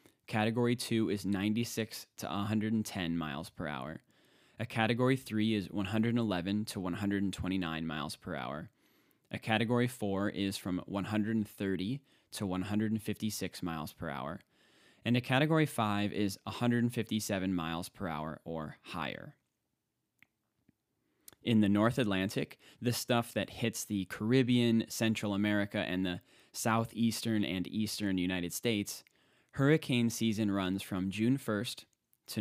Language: English